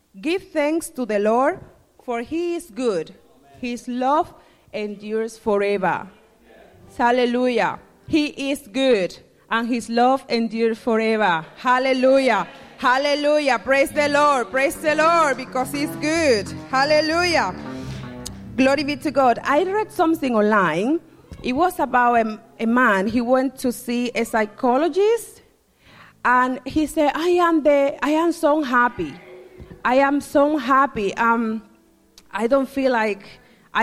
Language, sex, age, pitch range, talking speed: English, female, 30-49, 225-305 Hz, 125 wpm